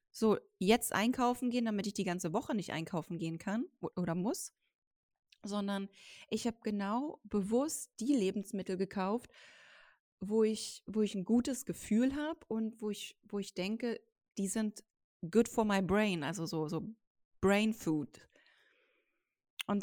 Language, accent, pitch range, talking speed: German, German, 195-245 Hz, 140 wpm